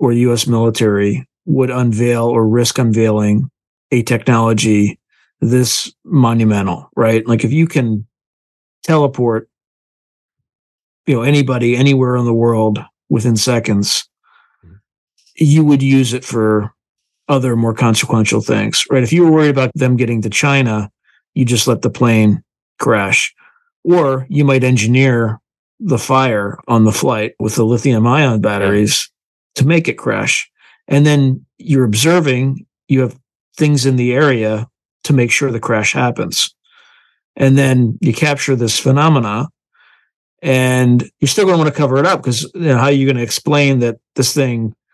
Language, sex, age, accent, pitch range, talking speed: English, male, 40-59, American, 115-140 Hz, 150 wpm